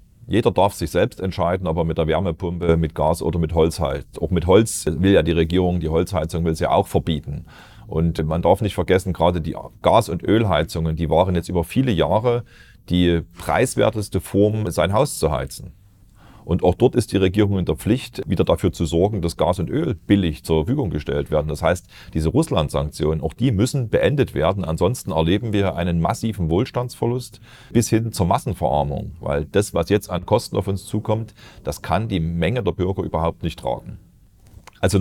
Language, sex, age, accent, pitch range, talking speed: German, male, 30-49, German, 80-100 Hz, 190 wpm